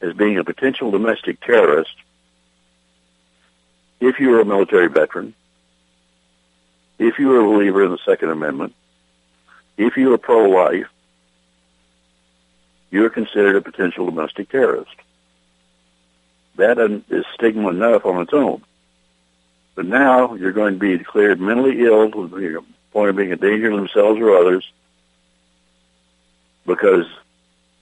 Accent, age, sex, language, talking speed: American, 60-79, male, English, 120 wpm